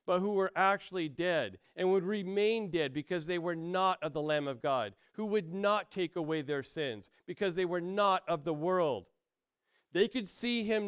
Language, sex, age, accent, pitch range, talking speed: English, male, 50-69, American, 150-195 Hz, 200 wpm